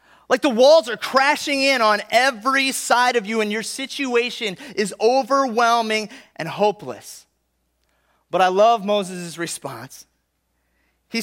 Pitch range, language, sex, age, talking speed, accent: 170-245 Hz, English, male, 30-49, 130 wpm, American